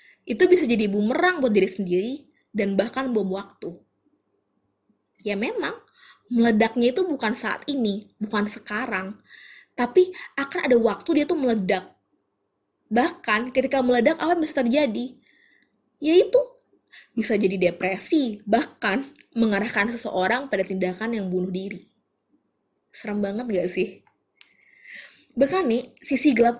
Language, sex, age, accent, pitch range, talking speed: Indonesian, female, 20-39, native, 200-270 Hz, 125 wpm